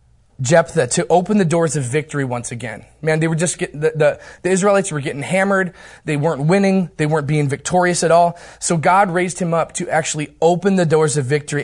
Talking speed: 210 wpm